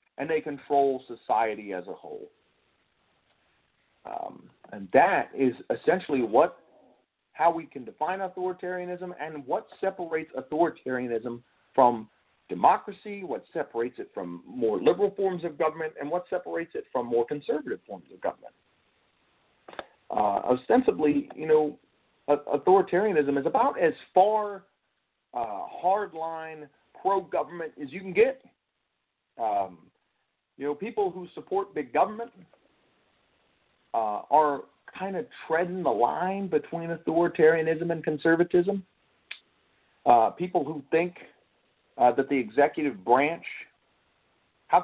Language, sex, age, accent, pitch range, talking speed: English, male, 40-59, American, 140-195 Hz, 120 wpm